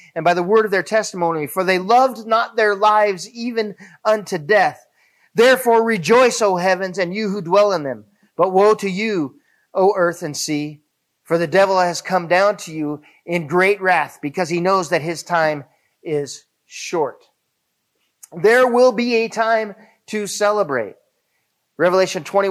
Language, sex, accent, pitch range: English, male, American, 180-225 Hz